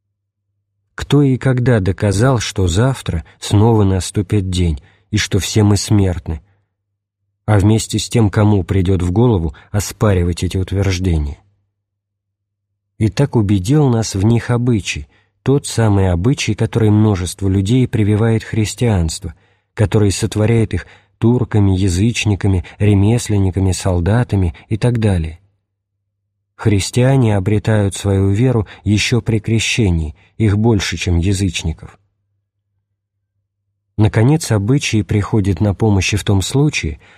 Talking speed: 110 wpm